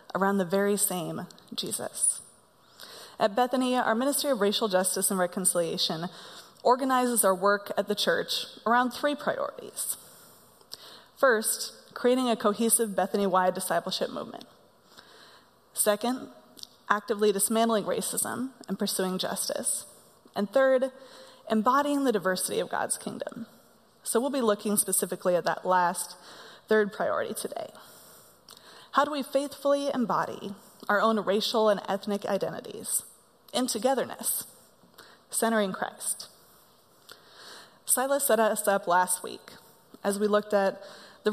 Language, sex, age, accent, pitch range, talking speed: English, female, 20-39, American, 195-245 Hz, 120 wpm